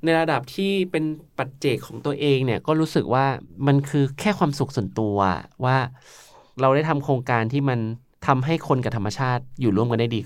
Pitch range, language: 110-140 Hz, Thai